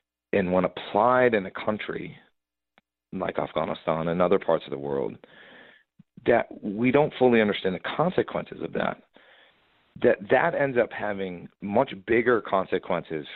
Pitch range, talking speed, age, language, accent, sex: 80-110 Hz, 140 wpm, 40-59, English, American, male